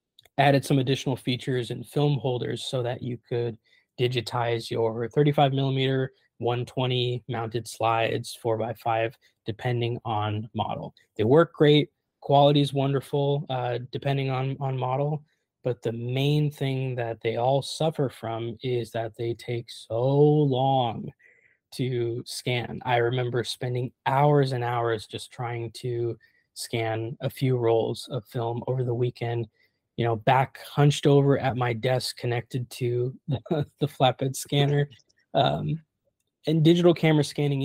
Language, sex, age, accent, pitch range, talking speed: English, male, 20-39, American, 120-140 Hz, 140 wpm